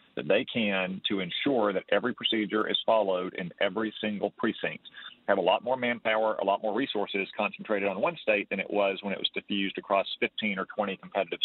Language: English